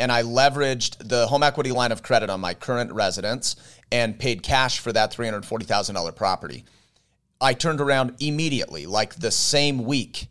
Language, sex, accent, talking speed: English, male, American, 165 wpm